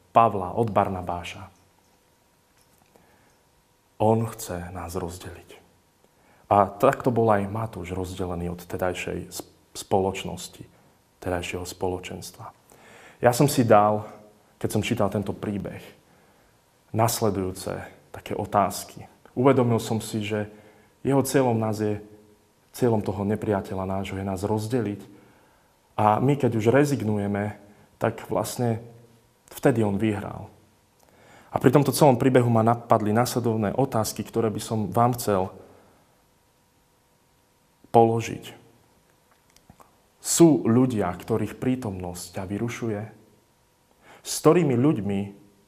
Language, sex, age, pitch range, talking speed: Slovak, male, 30-49, 95-120 Hz, 105 wpm